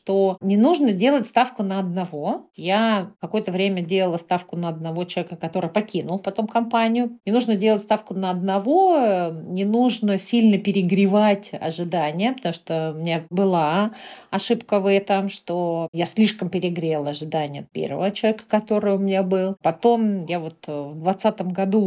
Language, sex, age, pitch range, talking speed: Russian, female, 40-59, 165-215 Hz, 155 wpm